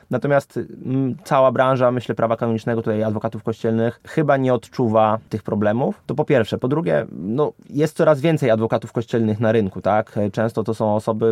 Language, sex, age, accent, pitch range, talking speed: Polish, male, 20-39, native, 110-120 Hz, 170 wpm